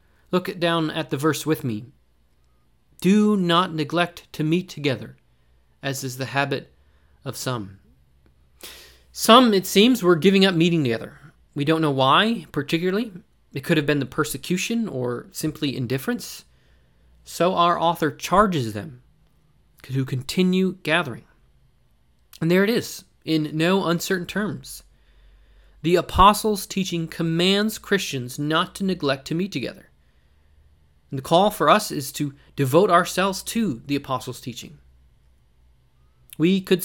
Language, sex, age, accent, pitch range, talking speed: English, male, 30-49, American, 125-185 Hz, 135 wpm